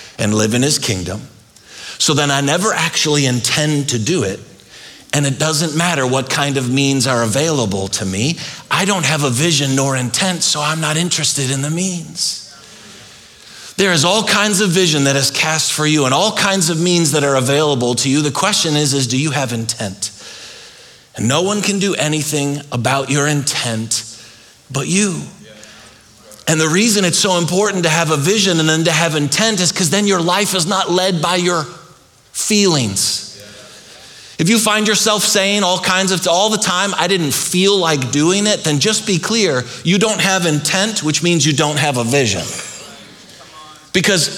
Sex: male